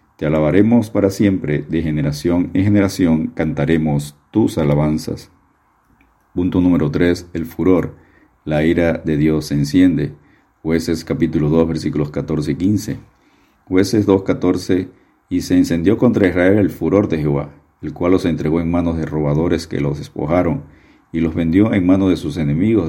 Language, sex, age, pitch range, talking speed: Spanish, male, 50-69, 75-90 Hz, 155 wpm